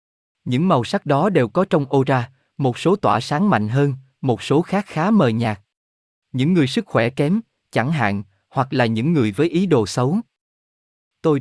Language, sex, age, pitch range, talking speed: Vietnamese, male, 20-39, 115-155 Hz, 190 wpm